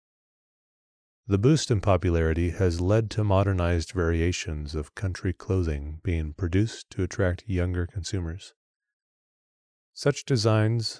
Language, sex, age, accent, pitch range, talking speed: English, male, 30-49, American, 85-100 Hz, 110 wpm